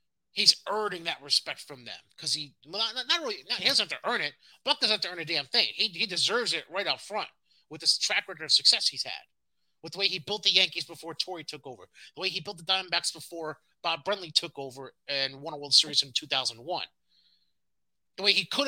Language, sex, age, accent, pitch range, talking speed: English, male, 30-49, American, 170-270 Hz, 240 wpm